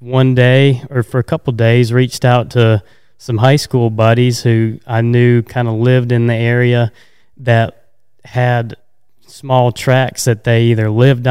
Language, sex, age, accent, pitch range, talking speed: English, male, 20-39, American, 110-125 Hz, 165 wpm